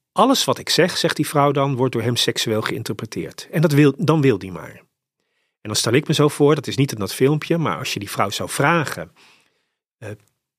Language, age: Dutch, 40-59